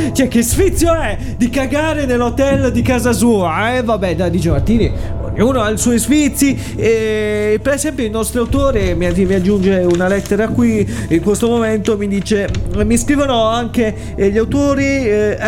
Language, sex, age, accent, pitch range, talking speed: Italian, male, 20-39, native, 195-245 Hz, 165 wpm